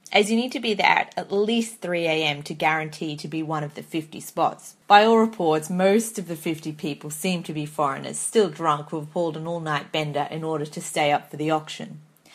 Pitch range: 160-205 Hz